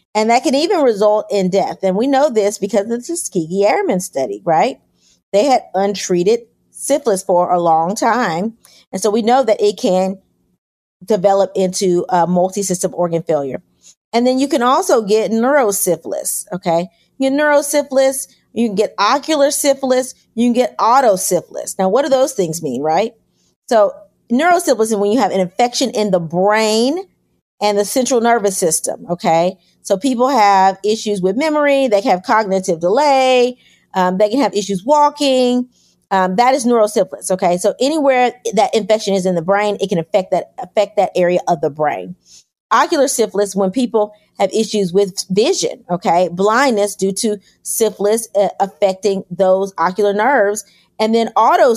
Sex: female